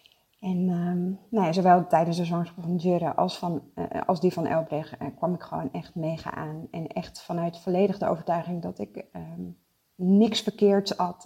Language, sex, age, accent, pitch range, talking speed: Dutch, female, 30-49, Dutch, 160-200 Hz, 185 wpm